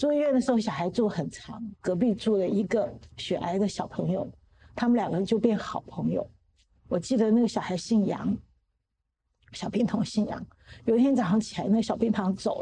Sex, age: female, 50-69